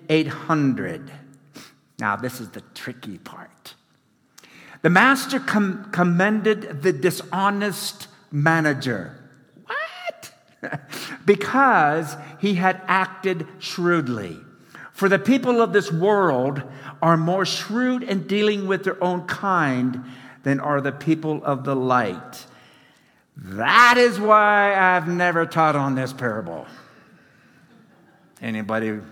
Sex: male